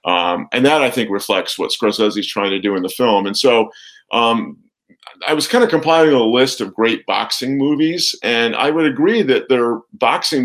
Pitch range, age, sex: 105-155 Hz, 50-69, male